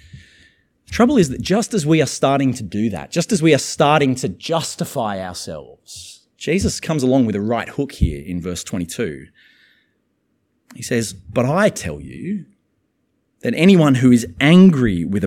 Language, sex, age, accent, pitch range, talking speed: English, male, 30-49, Australian, 125-180 Hz, 165 wpm